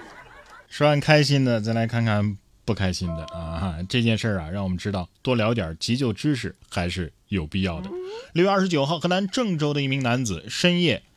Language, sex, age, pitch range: Chinese, male, 20-39, 100-145 Hz